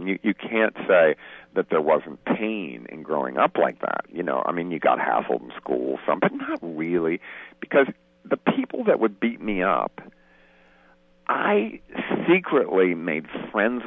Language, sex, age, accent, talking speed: English, male, 50-69, American, 170 wpm